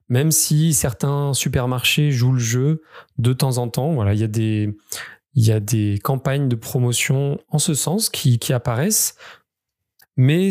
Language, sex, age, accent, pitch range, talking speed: French, male, 20-39, French, 125-155 Hz, 150 wpm